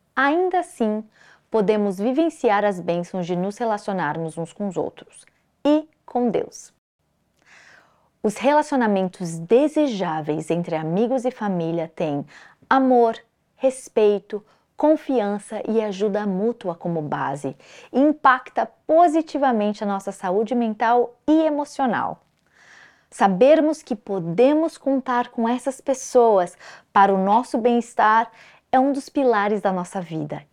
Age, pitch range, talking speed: 20-39, 190-265 Hz, 115 wpm